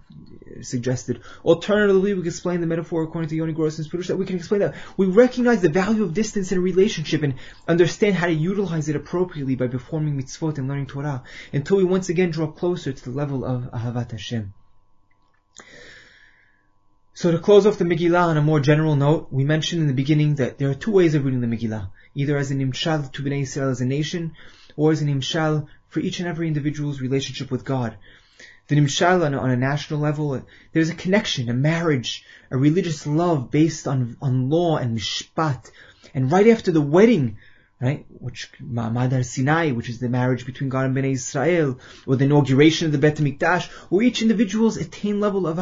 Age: 20-39